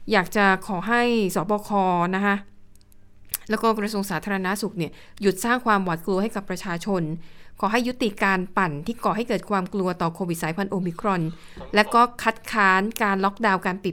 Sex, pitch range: female, 185-225 Hz